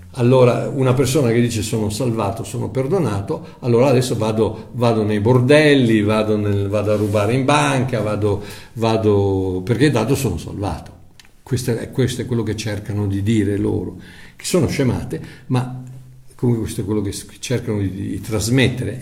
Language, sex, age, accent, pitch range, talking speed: Italian, male, 60-79, native, 110-145 Hz, 150 wpm